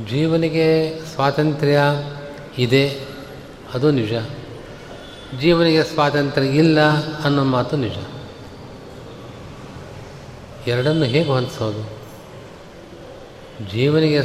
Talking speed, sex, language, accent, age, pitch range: 65 wpm, male, Kannada, native, 40-59, 120-155 Hz